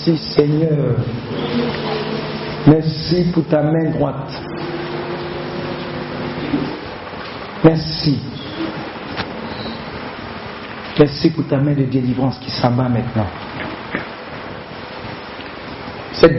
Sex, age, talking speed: male, 50-69, 70 wpm